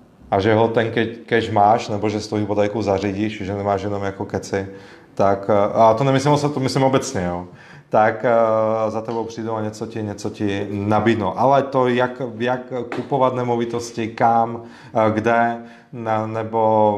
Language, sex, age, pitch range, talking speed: Czech, male, 30-49, 105-120 Hz, 155 wpm